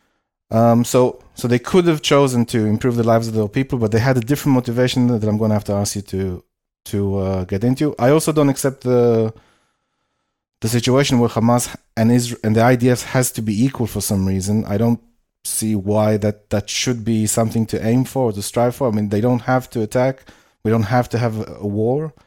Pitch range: 110-125 Hz